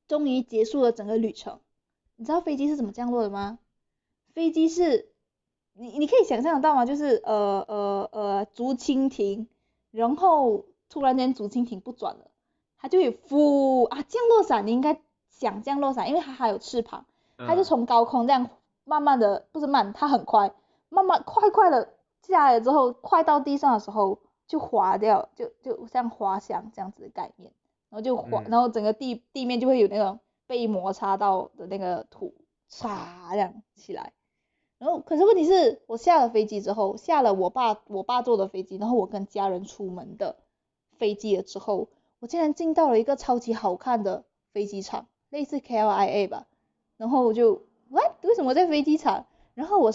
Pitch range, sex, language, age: 210-305 Hz, female, Chinese, 20-39